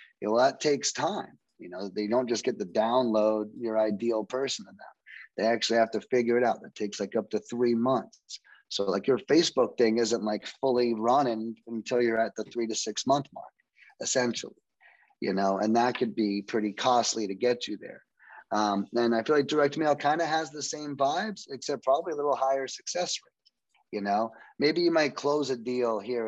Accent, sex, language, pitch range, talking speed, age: American, male, English, 115-145 Hz, 210 wpm, 30-49